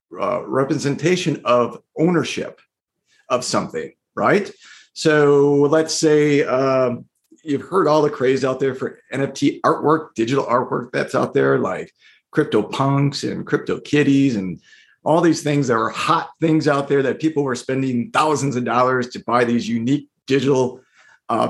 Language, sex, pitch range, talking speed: English, male, 125-155 Hz, 150 wpm